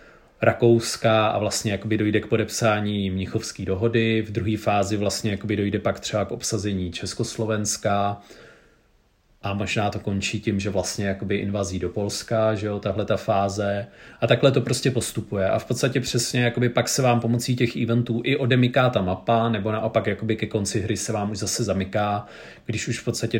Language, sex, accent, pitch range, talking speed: Czech, male, native, 95-110 Hz, 175 wpm